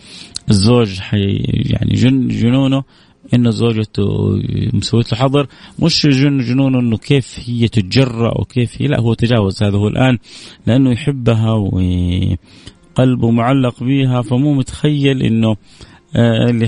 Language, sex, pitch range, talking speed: Arabic, male, 110-145 Hz, 120 wpm